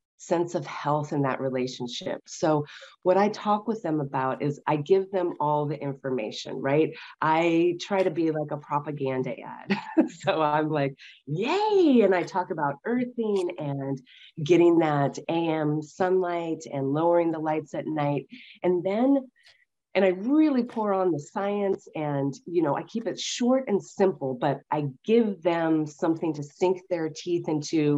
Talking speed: 165 wpm